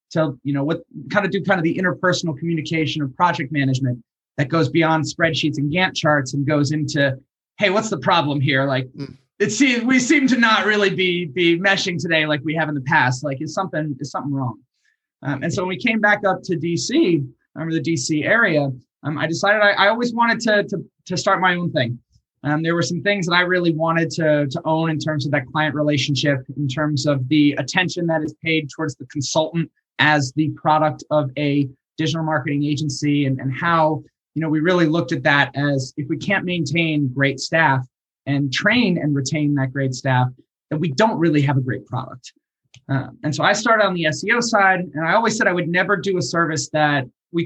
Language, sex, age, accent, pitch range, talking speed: English, male, 20-39, American, 145-175 Hz, 220 wpm